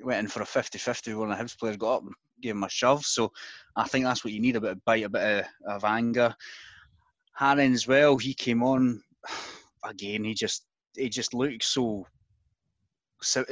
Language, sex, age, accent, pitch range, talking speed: English, male, 20-39, British, 100-120 Hz, 210 wpm